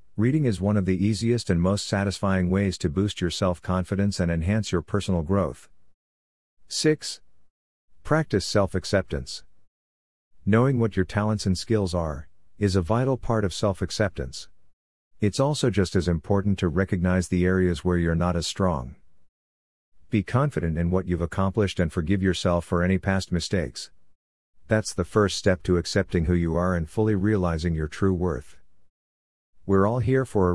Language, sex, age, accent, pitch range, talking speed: English, male, 50-69, American, 85-105 Hz, 160 wpm